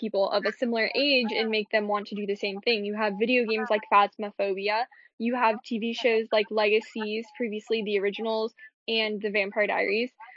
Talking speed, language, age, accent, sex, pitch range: 190 wpm, English, 10-29, American, female, 215-260 Hz